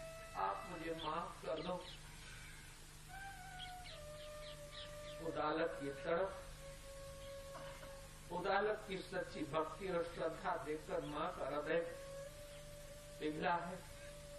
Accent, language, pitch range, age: native, Hindi, 150-200 Hz, 50-69